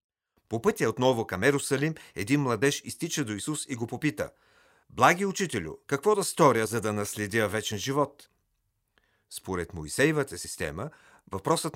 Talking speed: 140 wpm